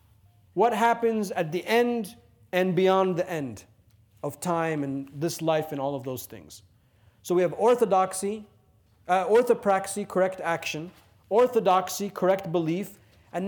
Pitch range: 135-200 Hz